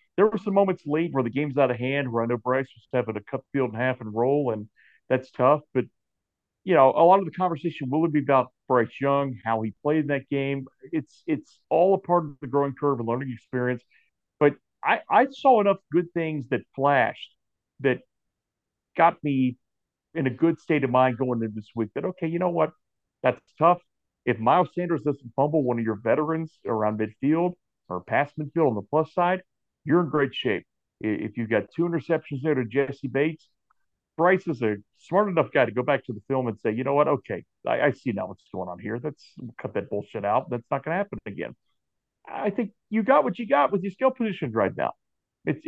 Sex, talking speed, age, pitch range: male, 225 wpm, 50-69, 125-170 Hz